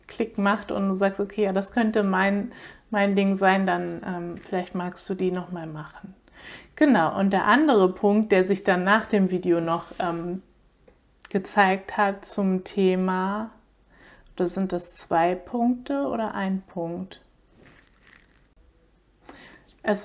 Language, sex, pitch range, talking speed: German, female, 185-215 Hz, 140 wpm